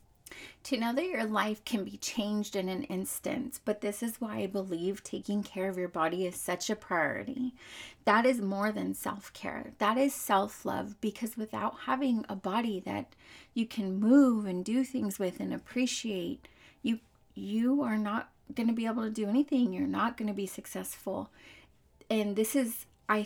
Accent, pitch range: American, 205-260 Hz